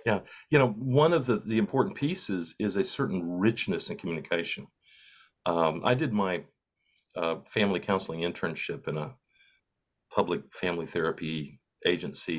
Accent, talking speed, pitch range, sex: American, 140 wpm, 90-140 Hz, male